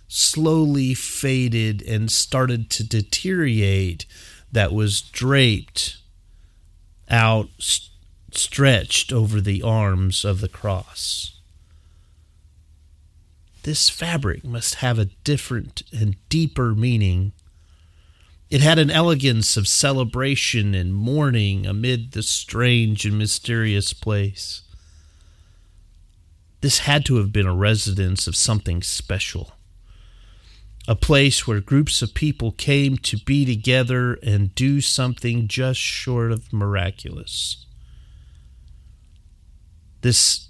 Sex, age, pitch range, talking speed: male, 30-49, 85-115 Hz, 100 wpm